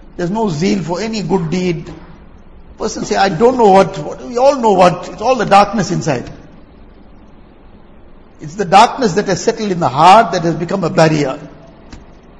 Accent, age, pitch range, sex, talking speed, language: Indian, 60-79, 170-210 Hz, male, 185 wpm, English